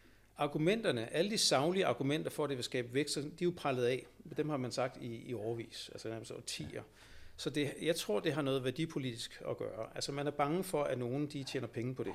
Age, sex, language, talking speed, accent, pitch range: 60-79, male, Danish, 230 wpm, native, 120-155 Hz